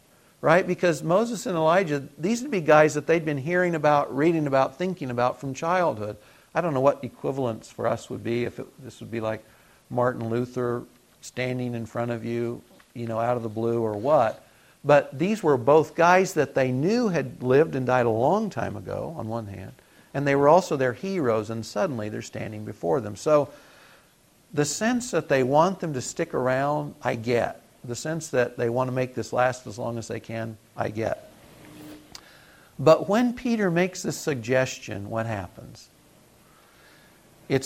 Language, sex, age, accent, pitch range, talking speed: English, male, 50-69, American, 115-150 Hz, 190 wpm